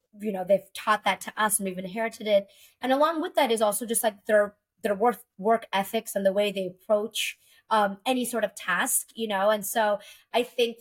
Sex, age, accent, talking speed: female, 20-39, American, 220 wpm